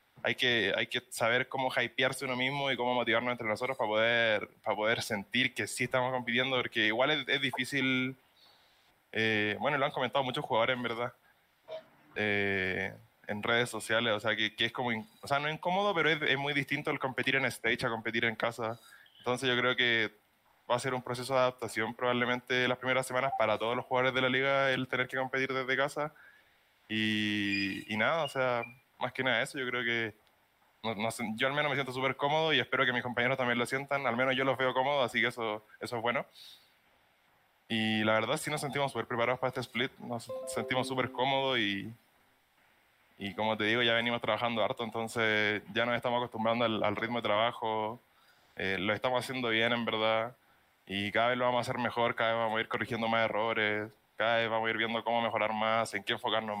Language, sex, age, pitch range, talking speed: Spanish, male, 20-39, 110-130 Hz, 215 wpm